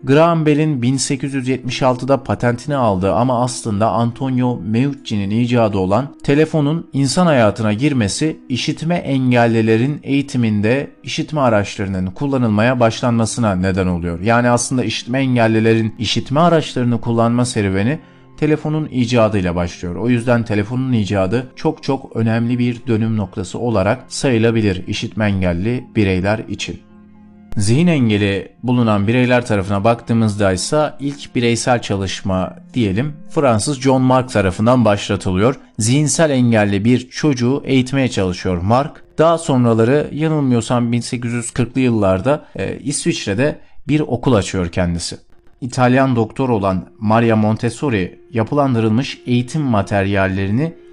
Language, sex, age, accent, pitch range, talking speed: Turkish, male, 40-59, native, 105-135 Hz, 110 wpm